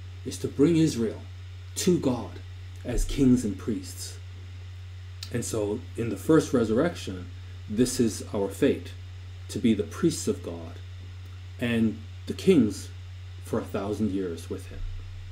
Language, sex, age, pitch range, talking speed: English, male, 40-59, 90-110 Hz, 135 wpm